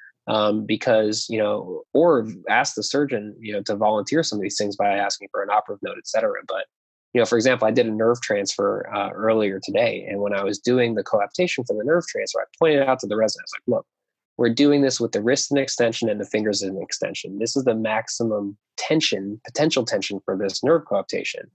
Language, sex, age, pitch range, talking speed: English, male, 20-39, 105-120 Hz, 230 wpm